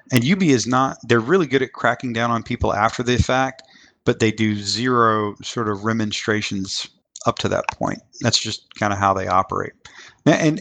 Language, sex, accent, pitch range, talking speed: English, male, American, 100-115 Hz, 200 wpm